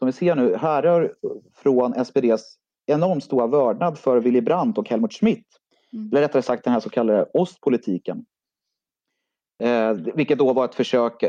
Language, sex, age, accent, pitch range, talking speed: Swedish, male, 30-49, native, 115-165 Hz, 160 wpm